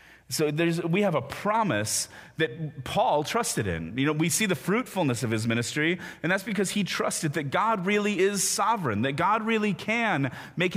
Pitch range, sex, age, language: 130-190 Hz, male, 30-49, English